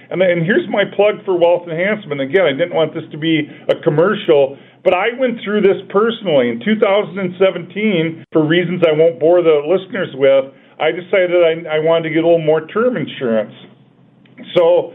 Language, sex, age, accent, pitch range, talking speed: English, male, 40-59, American, 155-190 Hz, 175 wpm